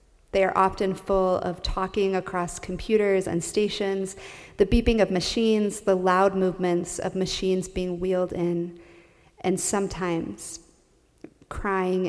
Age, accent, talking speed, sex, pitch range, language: 30-49, American, 125 wpm, female, 175-200 Hz, English